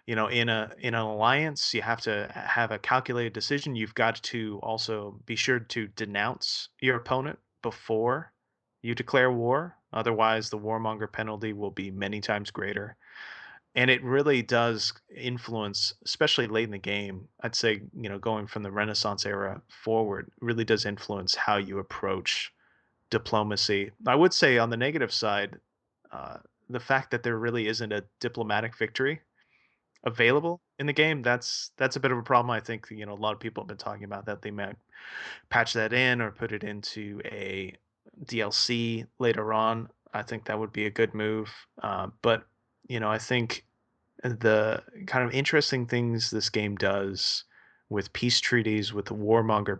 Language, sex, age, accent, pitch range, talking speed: English, male, 30-49, American, 105-120 Hz, 175 wpm